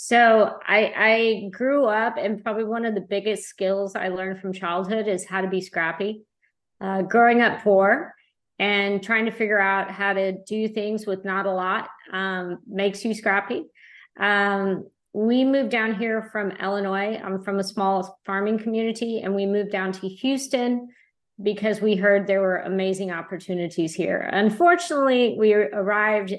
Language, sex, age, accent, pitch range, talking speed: English, female, 50-69, American, 195-225 Hz, 165 wpm